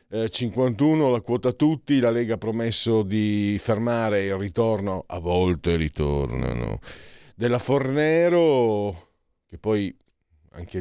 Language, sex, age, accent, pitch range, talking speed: Italian, male, 40-59, native, 90-120 Hz, 110 wpm